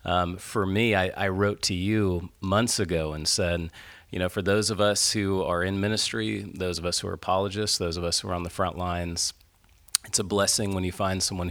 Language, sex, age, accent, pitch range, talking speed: English, male, 30-49, American, 85-100 Hz, 230 wpm